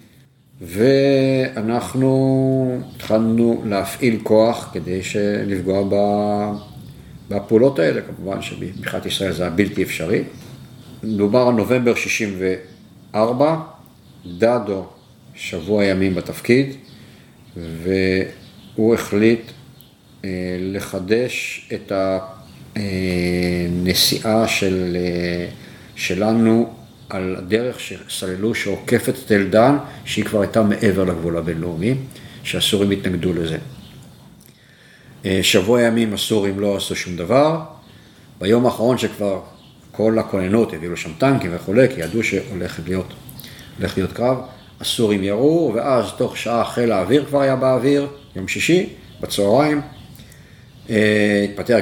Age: 50-69